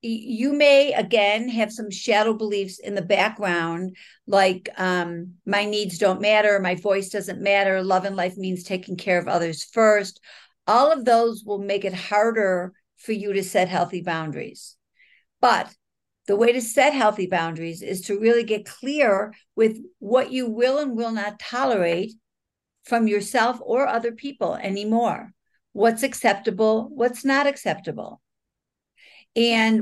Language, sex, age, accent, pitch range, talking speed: English, female, 60-79, American, 185-230 Hz, 150 wpm